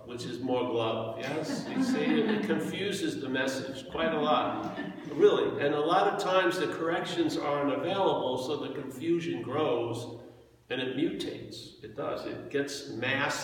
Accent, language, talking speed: American, English, 165 wpm